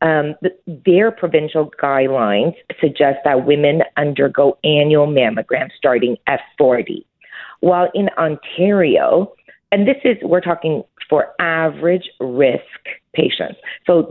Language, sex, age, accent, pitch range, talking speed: English, female, 40-59, American, 150-185 Hz, 110 wpm